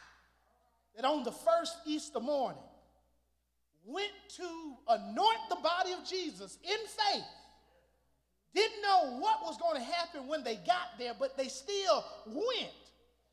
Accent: American